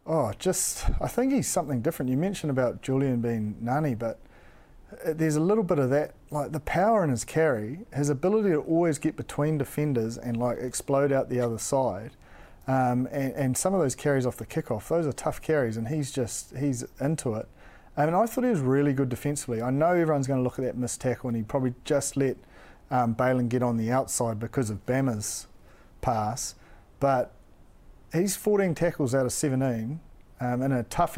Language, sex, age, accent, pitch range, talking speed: English, male, 40-59, Australian, 120-145 Hz, 205 wpm